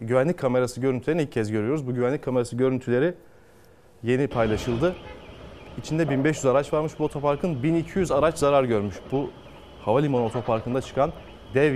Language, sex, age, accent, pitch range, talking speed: Turkish, male, 30-49, native, 115-145 Hz, 140 wpm